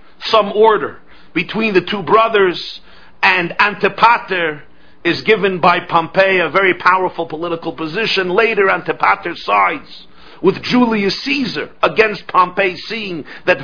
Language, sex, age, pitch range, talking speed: English, male, 50-69, 170-215 Hz, 120 wpm